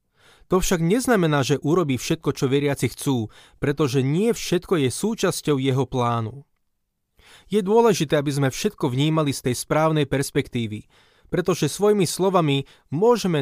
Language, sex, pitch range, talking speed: Slovak, male, 125-170 Hz, 135 wpm